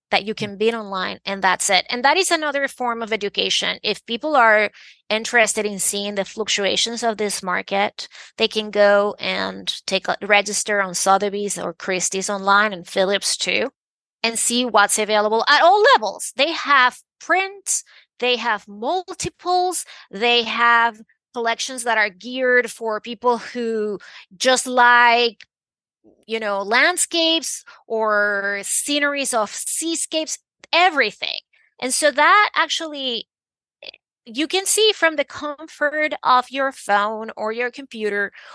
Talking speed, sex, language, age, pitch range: 135 wpm, female, English, 30-49, 205-275 Hz